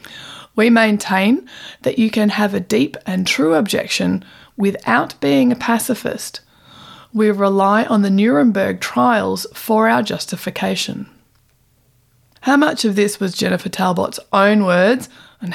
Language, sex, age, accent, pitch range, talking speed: English, female, 20-39, Australian, 185-225 Hz, 130 wpm